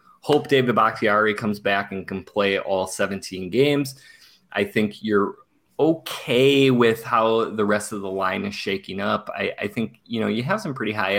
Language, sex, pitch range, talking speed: English, male, 95-115 Hz, 190 wpm